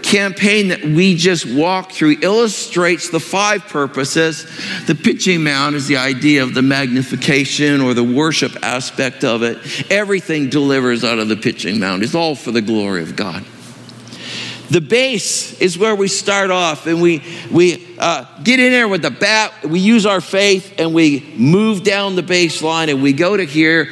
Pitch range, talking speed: 145-195 Hz, 180 wpm